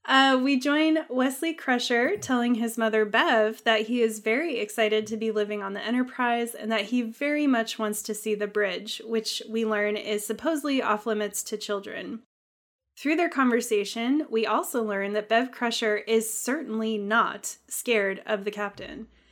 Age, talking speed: 20-39, 170 wpm